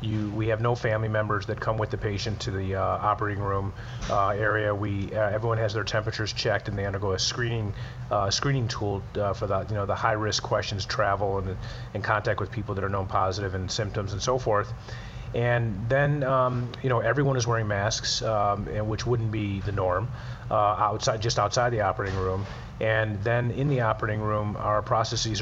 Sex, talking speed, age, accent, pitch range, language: male, 210 wpm, 30-49, American, 100-115 Hz, English